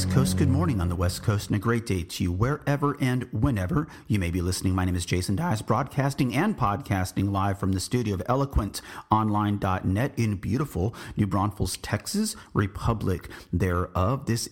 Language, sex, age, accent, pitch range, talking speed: English, male, 30-49, American, 90-120 Hz, 175 wpm